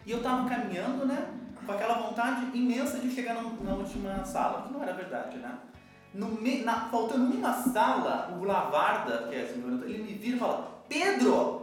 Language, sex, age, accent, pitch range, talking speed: Portuguese, male, 20-39, Brazilian, 205-255 Hz, 180 wpm